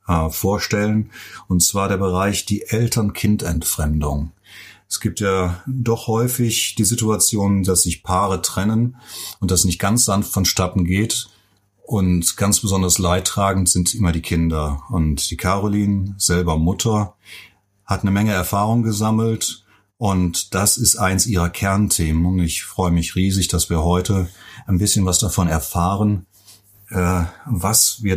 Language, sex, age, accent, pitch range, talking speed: German, male, 30-49, German, 90-105 Hz, 135 wpm